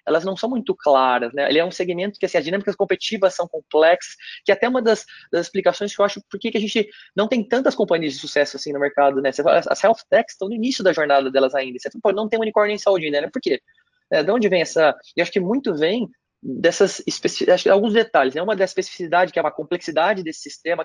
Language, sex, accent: Portuguese, male, Brazilian